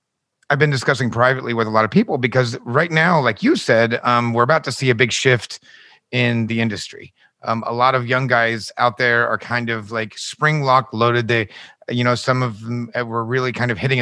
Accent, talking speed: American, 225 wpm